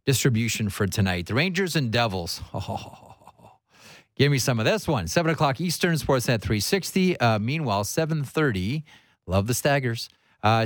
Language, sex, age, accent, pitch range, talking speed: English, male, 30-49, American, 100-130 Hz, 145 wpm